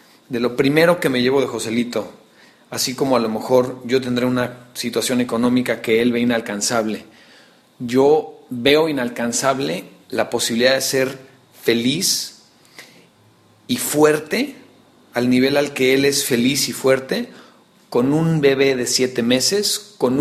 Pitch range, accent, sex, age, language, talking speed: 120-140 Hz, Mexican, male, 40-59, Spanish, 145 wpm